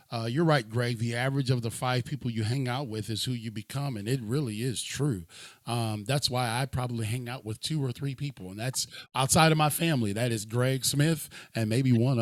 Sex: male